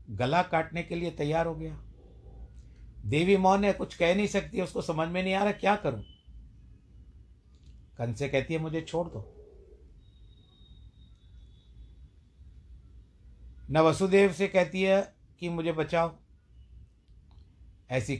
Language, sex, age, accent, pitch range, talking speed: Hindi, male, 60-79, native, 105-160 Hz, 125 wpm